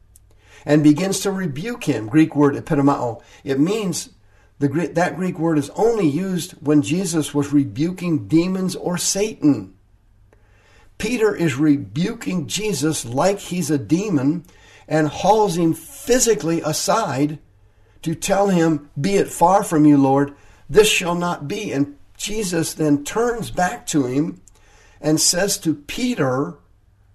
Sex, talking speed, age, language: male, 135 wpm, 60-79, English